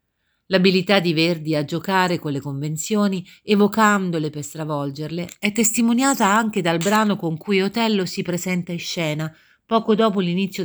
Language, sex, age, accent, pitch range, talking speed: Italian, female, 50-69, native, 155-195 Hz, 145 wpm